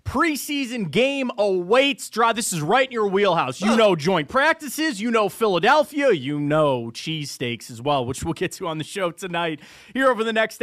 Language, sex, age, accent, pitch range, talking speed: English, male, 30-49, American, 150-205 Hz, 190 wpm